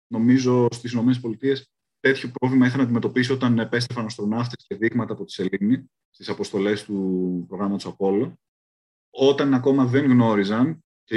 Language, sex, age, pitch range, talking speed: Greek, male, 30-49, 110-140 Hz, 145 wpm